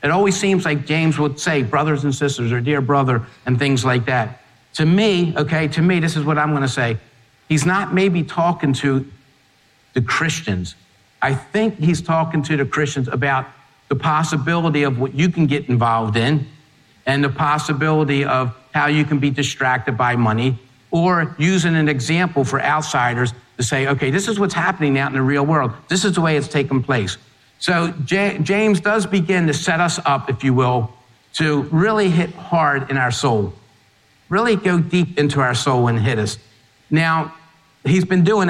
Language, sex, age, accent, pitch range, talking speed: English, male, 50-69, American, 125-160 Hz, 185 wpm